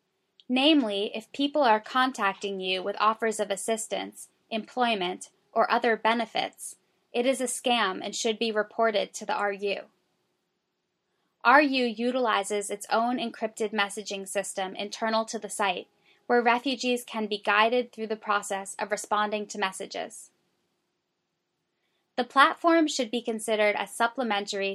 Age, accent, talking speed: 10-29, American, 135 wpm